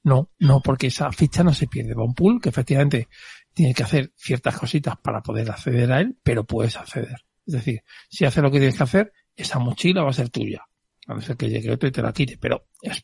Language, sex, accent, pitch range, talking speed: Spanish, male, Spanish, 125-160 Hz, 245 wpm